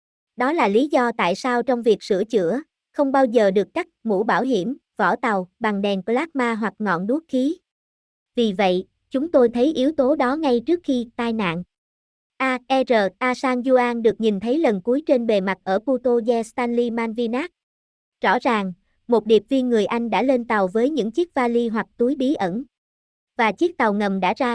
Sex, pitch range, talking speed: male, 215-260 Hz, 195 wpm